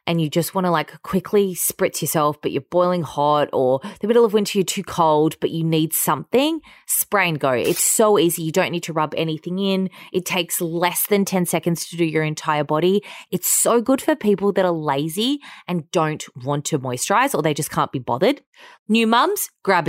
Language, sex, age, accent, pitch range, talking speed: English, female, 20-39, Australian, 155-215 Hz, 215 wpm